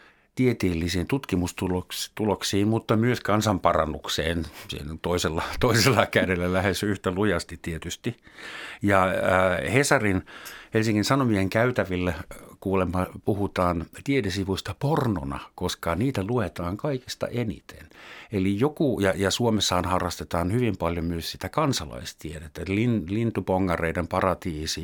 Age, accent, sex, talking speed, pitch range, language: 60-79, native, male, 100 wpm, 90-115 Hz, Finnish